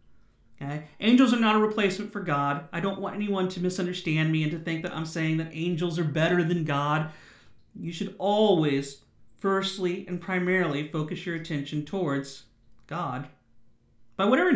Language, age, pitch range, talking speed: English, 40-59, 140-200 Hz, 160 wpm